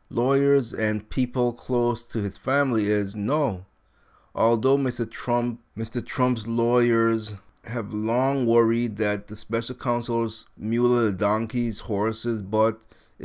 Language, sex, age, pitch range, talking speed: English, male, 30-49, 105-120 Hz, 120 wpm